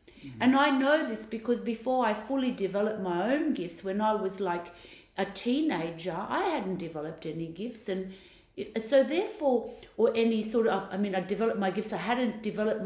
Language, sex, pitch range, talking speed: English, female, 190-245 Hz, 180 wpm